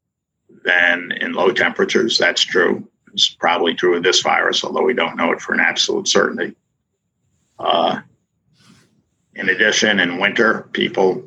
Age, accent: 50-69, American